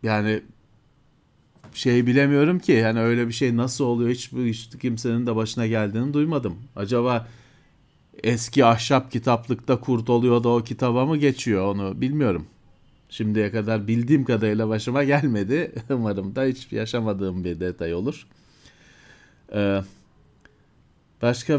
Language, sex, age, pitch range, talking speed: Turkish, male, 40-59, 115-140 Hz, 120 wpm